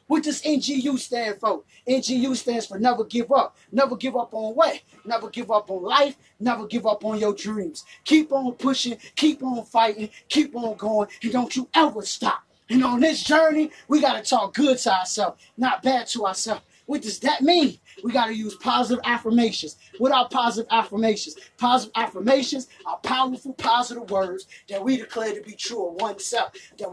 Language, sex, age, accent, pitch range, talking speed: English, male, 20-39, American, 225-310 Hz, 190 wpm